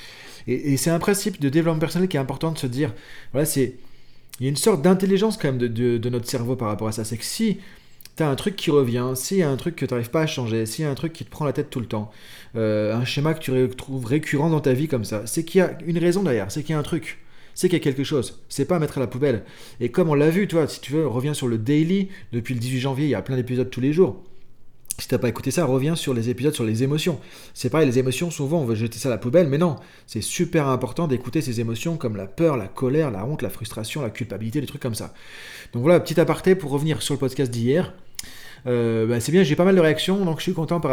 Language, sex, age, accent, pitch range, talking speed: French, male, 30-49, French, 125-160 Hz, 290 wpm